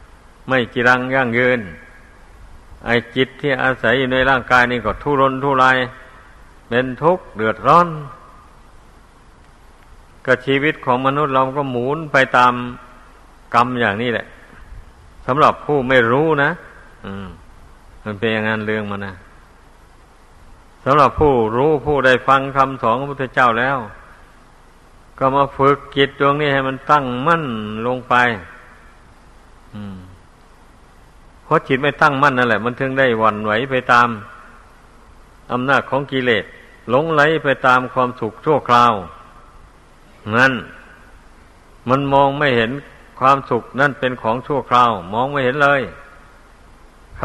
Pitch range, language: 105-135 Hz, Thai